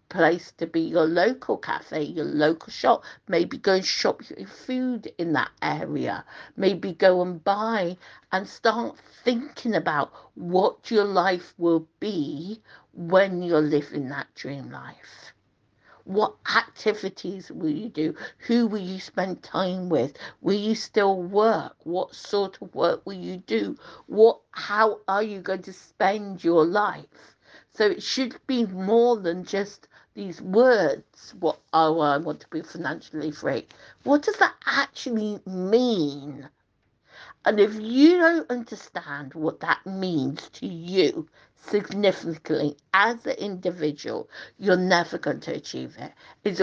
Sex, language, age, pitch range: female, English, 50-69, 165-220 Hz